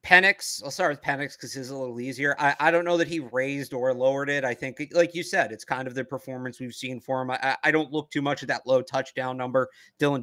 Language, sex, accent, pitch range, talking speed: English, male, American, 130-160 Hz, 270 wpm